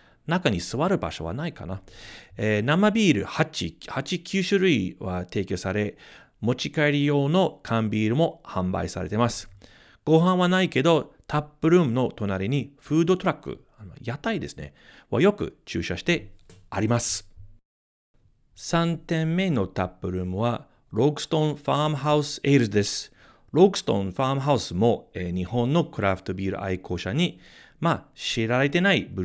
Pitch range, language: 95-155 Hz, Japanese